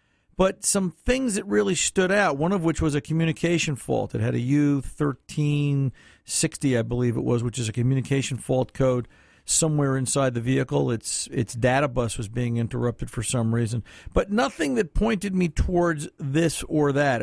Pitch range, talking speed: 125-160 Hz, 180 wpm